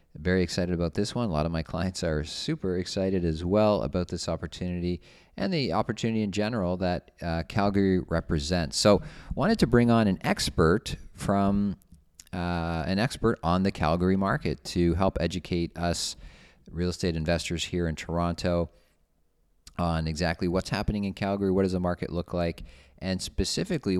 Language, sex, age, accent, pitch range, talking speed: English, male, 40-59, American, 80-95 Hz, 165 wpm